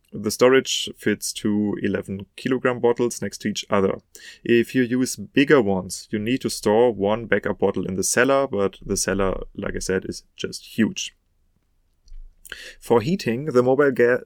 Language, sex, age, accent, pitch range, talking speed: English, male, 30-49, German, 105-130 Hz, 160 wpm